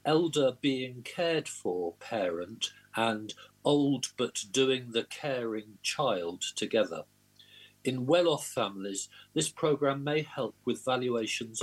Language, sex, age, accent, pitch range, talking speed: English, male, 50-69, British, 110-140 Hz, 115 wpm